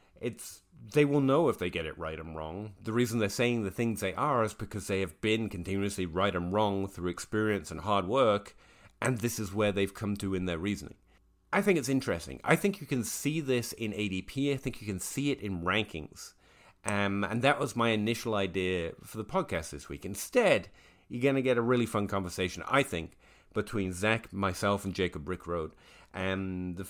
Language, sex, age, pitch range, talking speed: English, male, 30-49, 95-125 Hz, 210 wpm